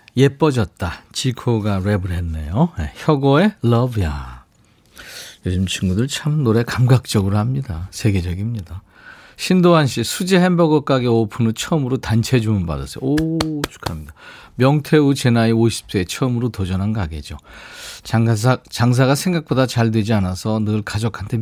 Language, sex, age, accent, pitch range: Korean, male, 40-59, native, 95-135 Hz